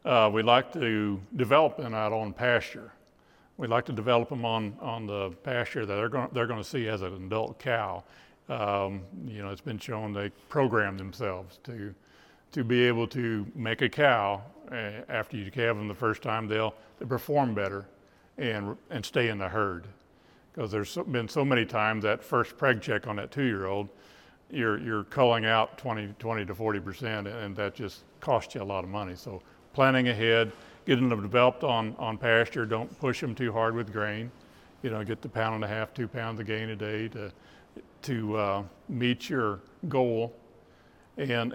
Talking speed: 190 wpm